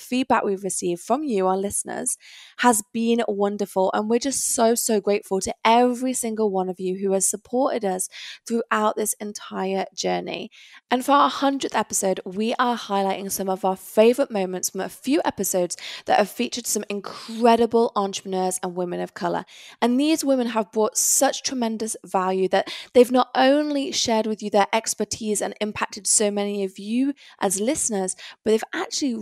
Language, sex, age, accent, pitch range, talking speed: English, female, 20-39, British, 195-240 Hz, 175 wpm